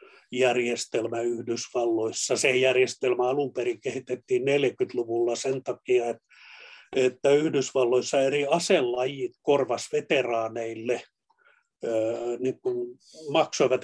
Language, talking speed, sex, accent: Finnish, 75 wpm, male, native